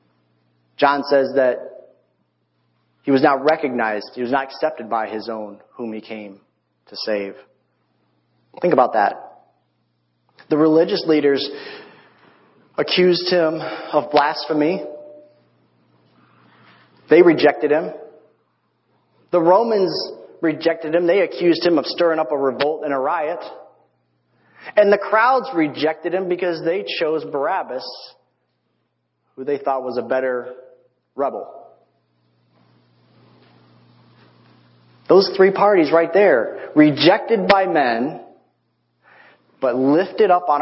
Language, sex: English, male